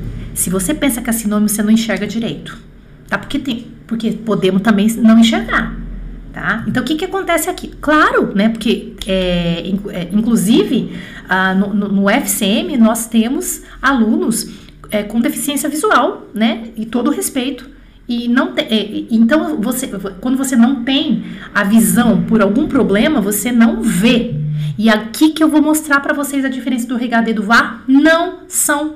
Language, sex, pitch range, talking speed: French, female, 200-270 Hz, 170 wpm